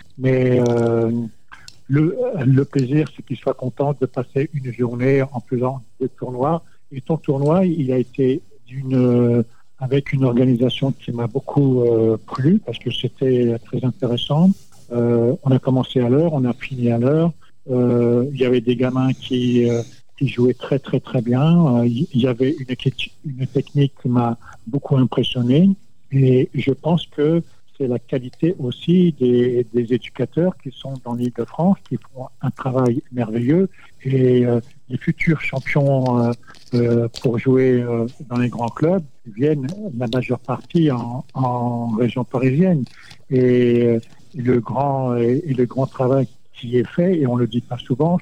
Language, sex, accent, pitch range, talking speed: French, male, French, 120-140 Hz, 170 wpm